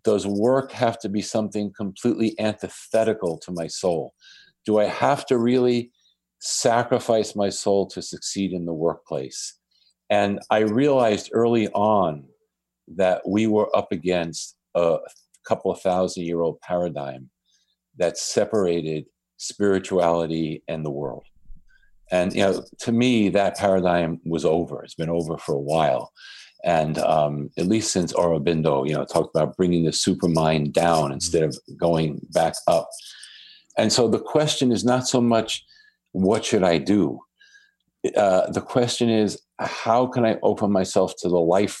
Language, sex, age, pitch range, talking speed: English, male, 50-69, 85-110 Hz, 150 wpm